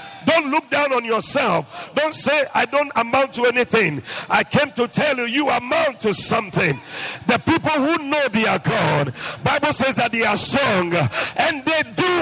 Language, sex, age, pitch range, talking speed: English, male, 50-69, 175-280 Hz, 175 wpm